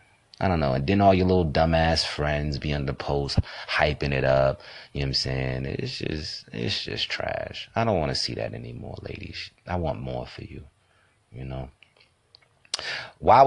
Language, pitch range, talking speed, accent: English, 80-110 Hz, 190 wpm, American